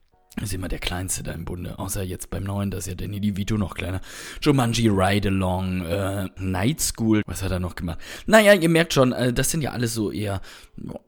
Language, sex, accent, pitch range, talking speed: German, male, German, 95-120 Hz, 210 wpm